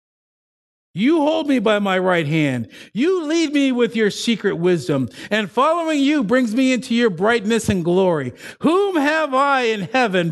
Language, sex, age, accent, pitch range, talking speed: English, male, 50-69, American, 180-275 Hz, 170 wpm